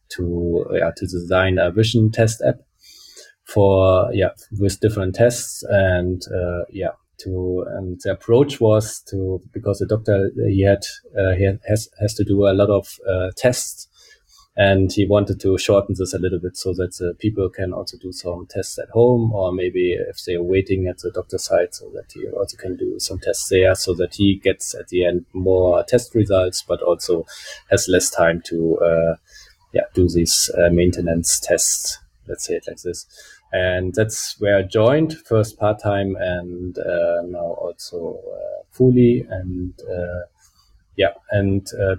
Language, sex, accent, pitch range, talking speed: English, male, German, 90-105 Hz, 180 wpm